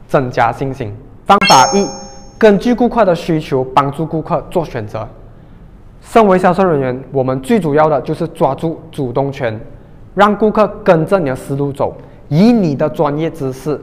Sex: male